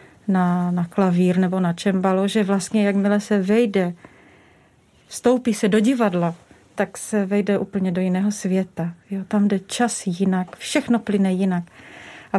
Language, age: Czech, 40-59